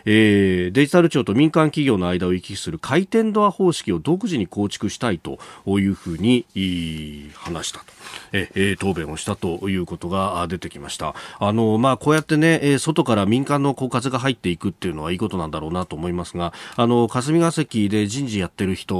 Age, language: 40-59, Japanese